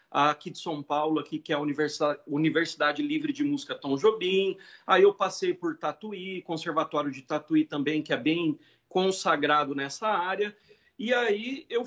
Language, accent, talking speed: Portuguese, Brazilian, 160 wpm